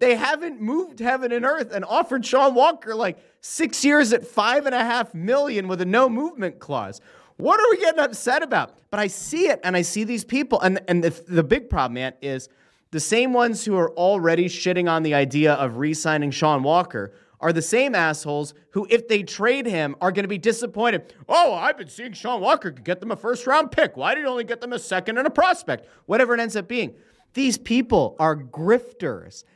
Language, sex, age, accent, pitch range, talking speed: English, male, 30-49, American, 155-240 Hz, 215 wpm